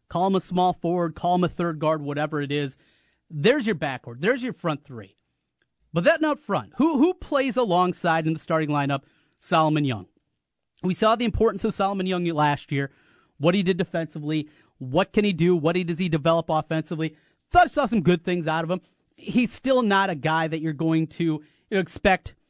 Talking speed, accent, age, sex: 205 wpm, American, 30-49, male